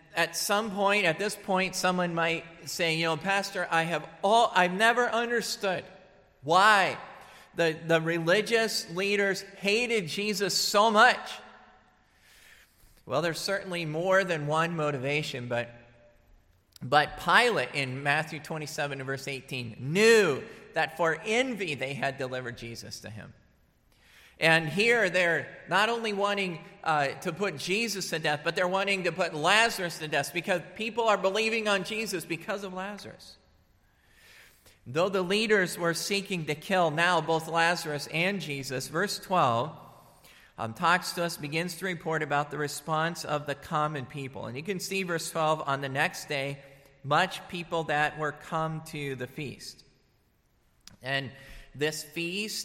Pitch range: 145-195 Hz